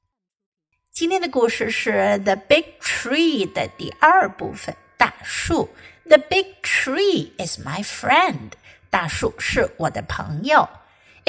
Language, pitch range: Chinese, 210-315 Hz